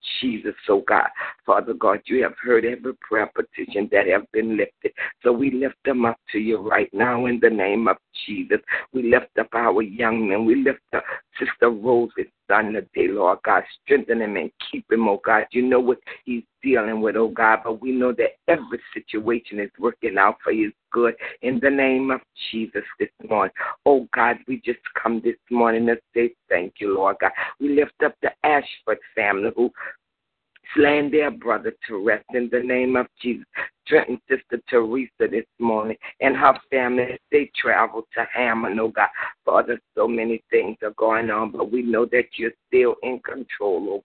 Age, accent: 50-69, American